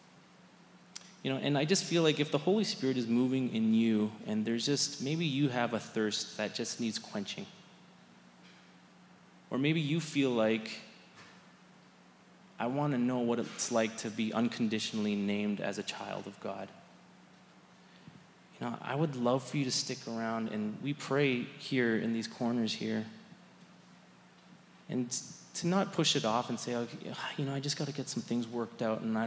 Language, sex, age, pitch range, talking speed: English, male, 20-39, 115-160 Hz, 180 wpm